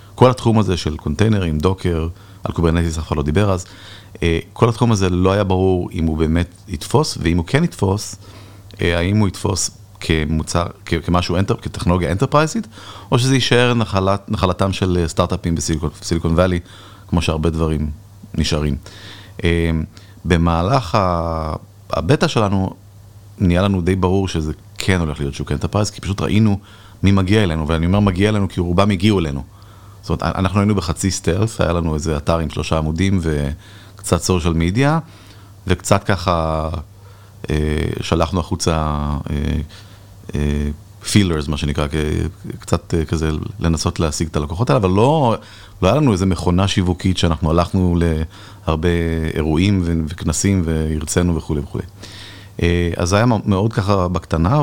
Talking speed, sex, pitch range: 145 wpm, male, 85-100 Hz